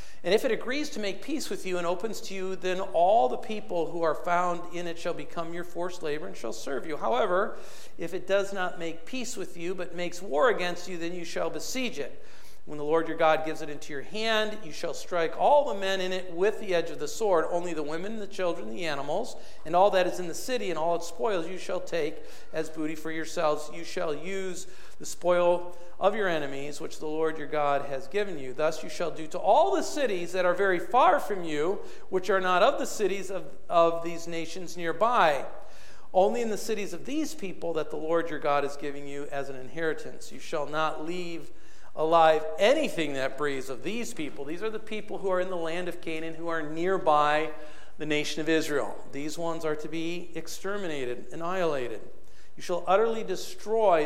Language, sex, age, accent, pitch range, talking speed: English, male, 50-69, American, 155-195 Hz, 220 wpm